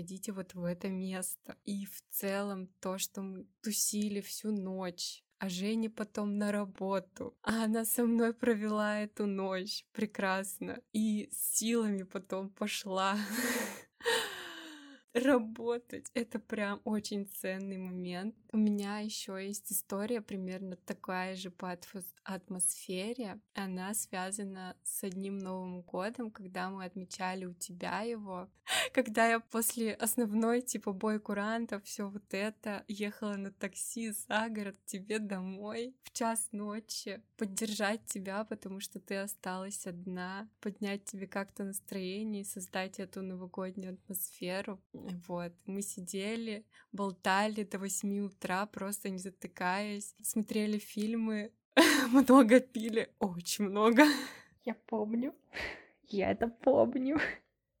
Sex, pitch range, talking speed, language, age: female, 190-225 Hz, 120 wpm, Russian, 20-39